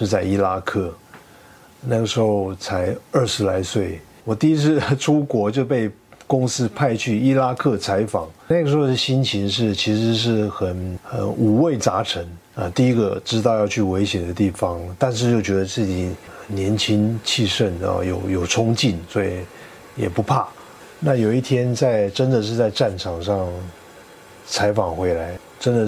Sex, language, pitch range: male, Chinese, 95-135 Hz